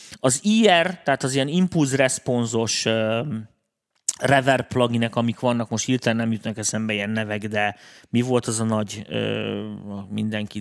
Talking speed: 155 wpm